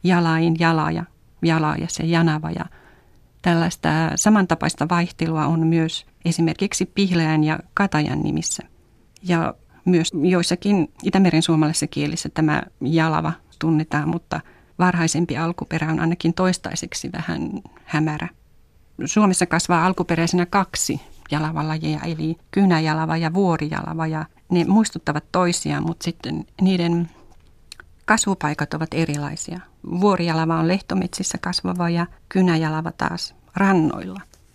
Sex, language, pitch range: female, Finnish, 160-180 Hz